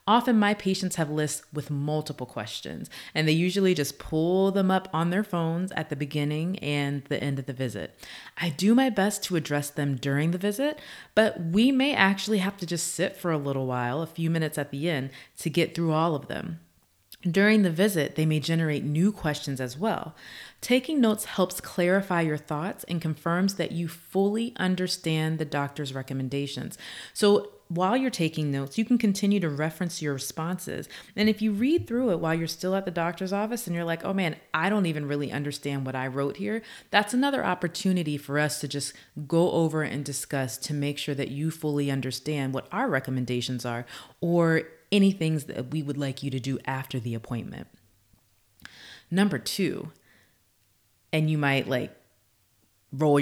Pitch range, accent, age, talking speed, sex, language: 140-185 Hz, American, 30-49, 190 wpm, female, English